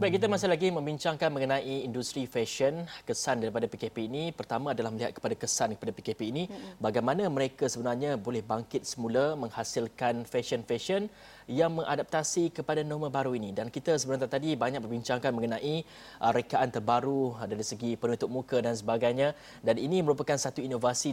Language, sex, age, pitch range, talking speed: Malay, male, 20-39, 115-145 Hz, 155 wpm